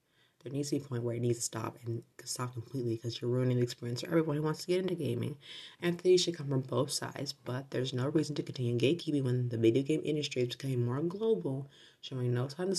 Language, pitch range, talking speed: English, 120-155 Hz, 255 wpm